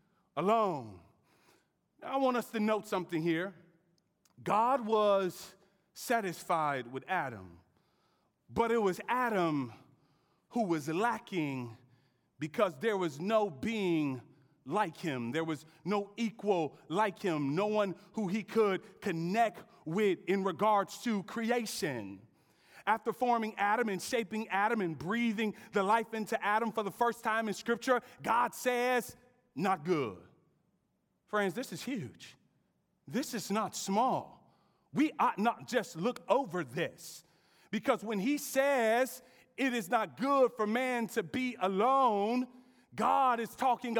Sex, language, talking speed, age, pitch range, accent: male, English, 130 wpm, 30-49, 180-235 Hz, American